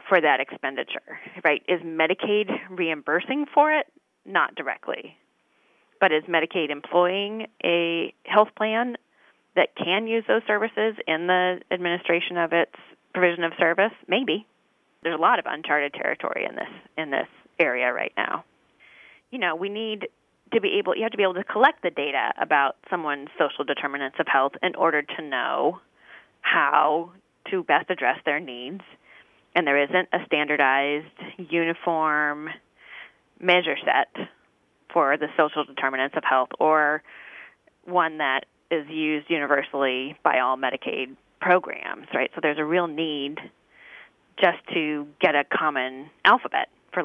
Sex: female